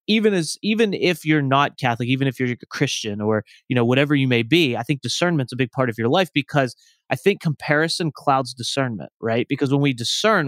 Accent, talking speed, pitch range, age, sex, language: American, 225 wpm, 120-155 Hz, 30-49, male, English